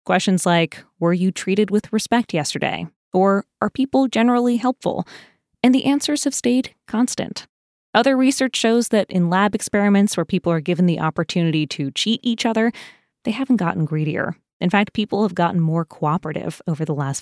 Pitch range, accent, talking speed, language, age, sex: 170-225 Hz, American, 175 wpm, English, 20-39, female